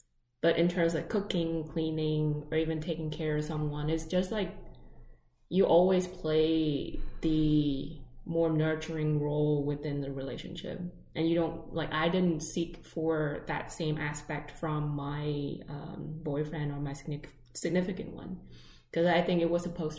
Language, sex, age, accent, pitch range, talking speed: English, female, 20-39, American, 145-165 Hz, 150 wpm